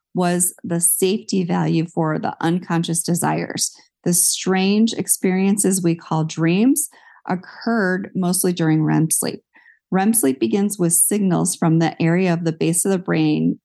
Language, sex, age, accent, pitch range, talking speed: English, female, 40-59, American, 165-195 Hz, 145 wpm